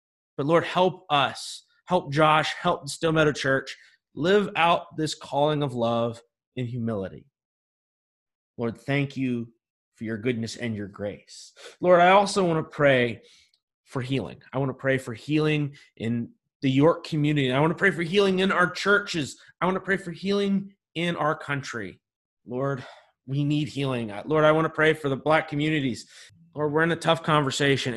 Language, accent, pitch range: English, American, 130-160 Hz